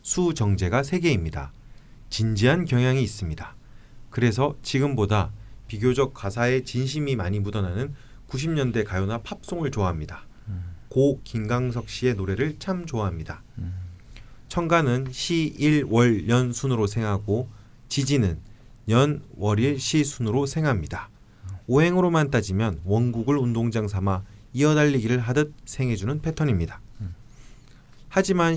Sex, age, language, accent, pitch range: male, 30-49, Korean, native, 105-140 Hz